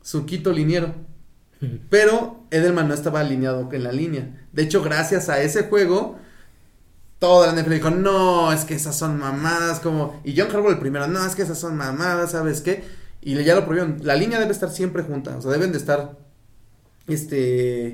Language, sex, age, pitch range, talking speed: Spanish, male, 30-49, 130-180 Hz, 185 wpm